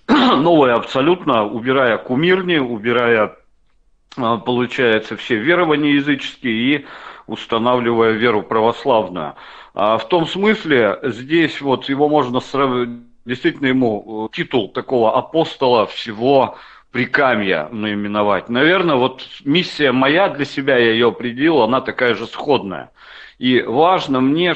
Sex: male